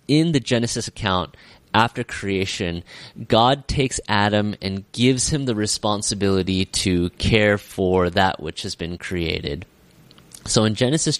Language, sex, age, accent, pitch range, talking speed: English, male, 30-49, American, 95-120 Hz, 135 wpm